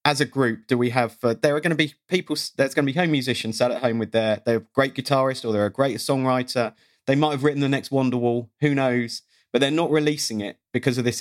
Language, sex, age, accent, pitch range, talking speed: English, male, 40-59, British, 110-135 Hz, 260 wpm